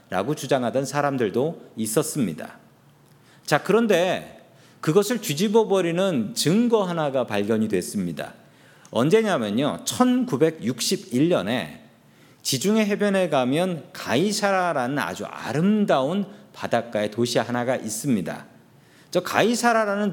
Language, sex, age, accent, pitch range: Korean, male, 40-59, native, 135-210 Hz